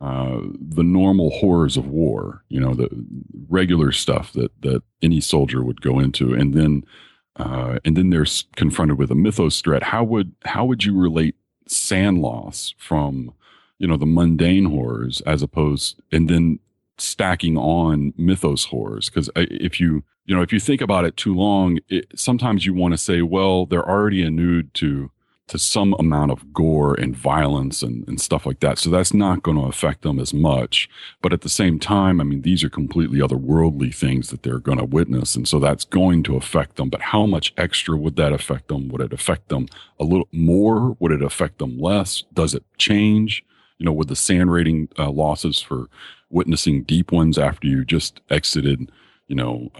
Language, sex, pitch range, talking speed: English, male, 70-90 Hz, 195 wpm